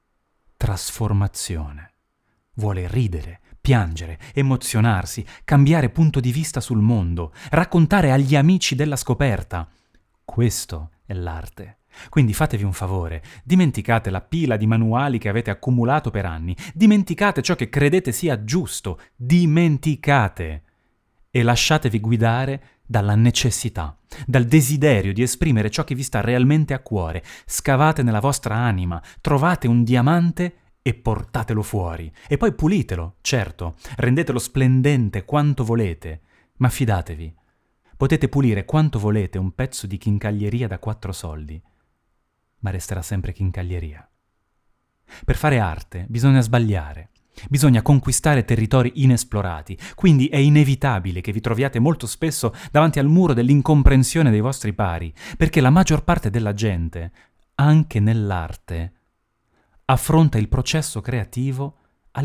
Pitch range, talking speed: 95-140 Hz, 125 wpm